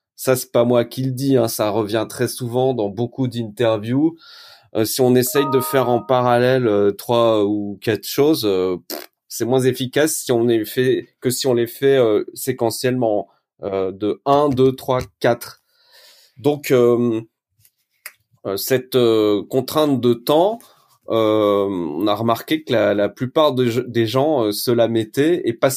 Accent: French